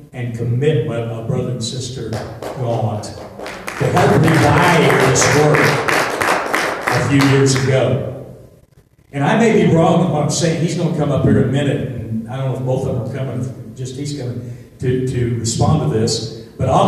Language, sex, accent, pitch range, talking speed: English, male, American, 120-155 Hz, 190 wpm